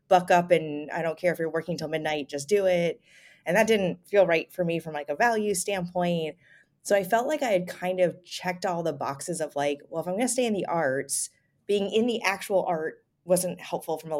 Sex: female